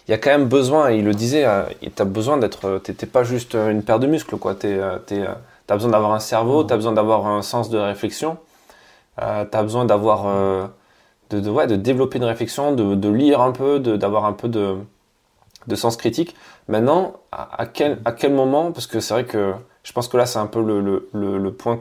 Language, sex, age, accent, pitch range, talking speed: French, male, 20-39, French, 105-125 Hz, 225 wpm